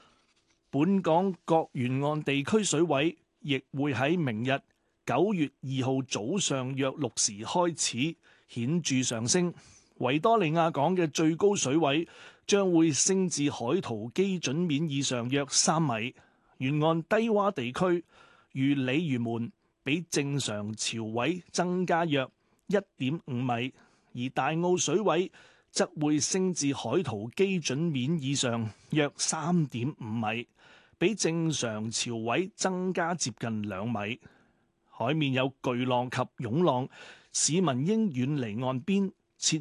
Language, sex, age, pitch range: Chinese, male, 30-49, 125-175 Hz